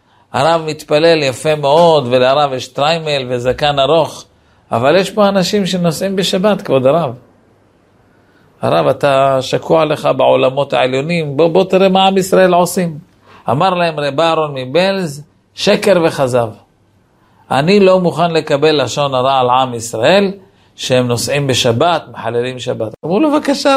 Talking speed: 135 wpm